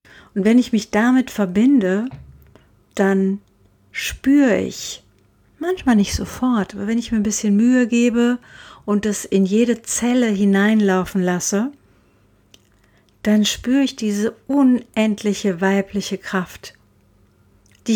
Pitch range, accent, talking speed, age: 185-225 Hz, German, 115 wpm, 50-69